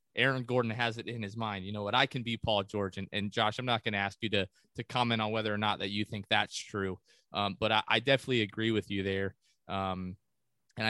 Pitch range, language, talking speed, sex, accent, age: 100-115 Hz, English, 260 wpm, male, American, 20-39